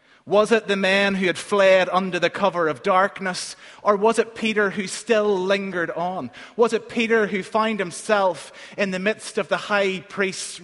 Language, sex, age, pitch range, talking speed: English, male, 30-49, 165-205 Hz, 185 wpm